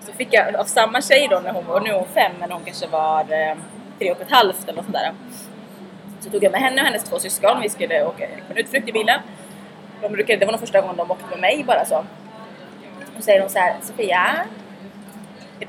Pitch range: 200-265 Hz